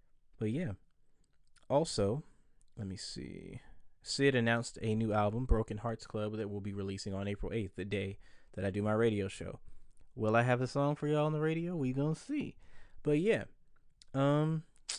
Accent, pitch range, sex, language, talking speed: American, 100-120 Hz, male, English, 180 wpm